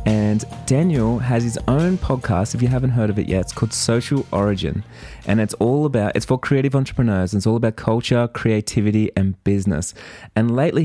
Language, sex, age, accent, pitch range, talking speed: English, male, 20-39, Australian, 105-120 Hz, 195 wpm